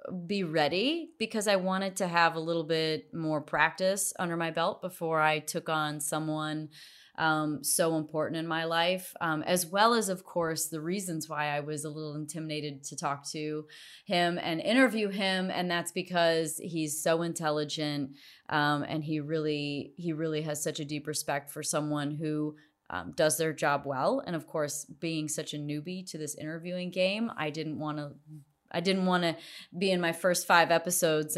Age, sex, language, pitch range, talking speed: 30-49, female, English, 155-195 Hz, 185 wpm